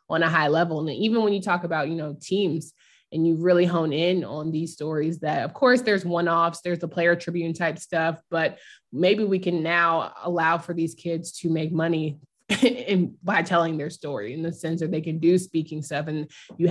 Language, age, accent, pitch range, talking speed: English, 20-39, American, 160-180 Hz, 220 wpm